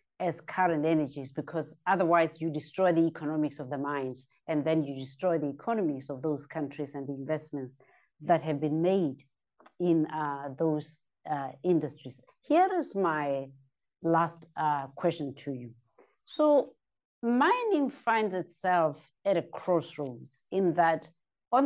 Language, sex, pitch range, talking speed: English, female, 150-190 Hz, 140 wpm